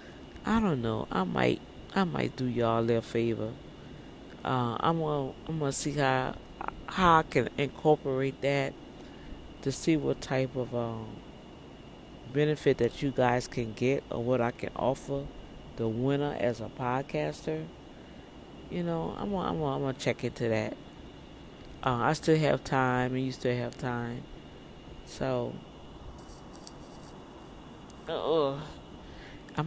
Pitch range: 120-150 Hz